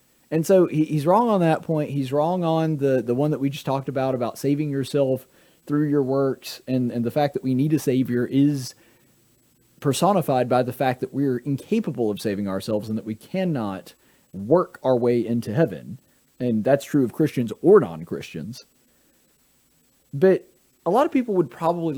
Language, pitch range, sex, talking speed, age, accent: English, 125-165 Hz, male, 185 wpm, 30-49, American